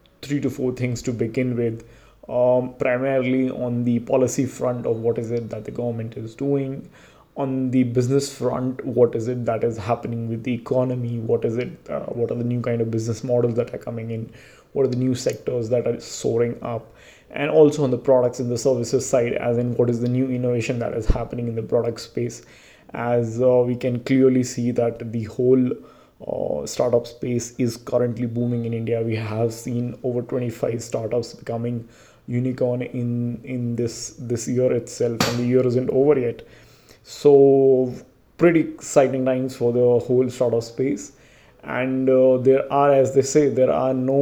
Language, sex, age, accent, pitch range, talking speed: English, male, 20-39, Indian, 120-130 Hz, 190 wpm